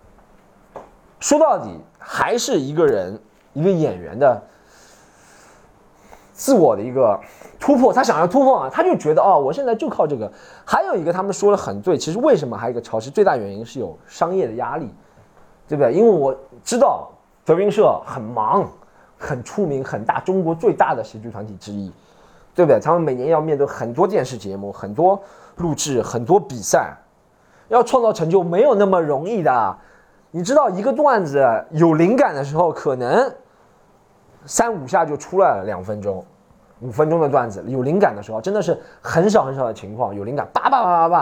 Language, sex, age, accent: Chinese, male, 20-39, native